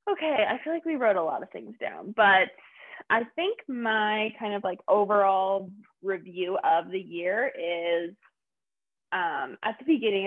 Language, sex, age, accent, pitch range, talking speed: English, female, 20-39, American, 170-215 Hz, 165 wpm